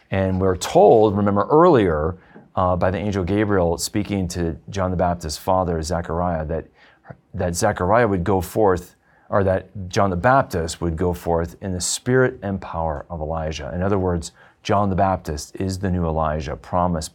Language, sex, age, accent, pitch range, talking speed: English, male, 40-59, American, 80-105 Hz, 170 wpm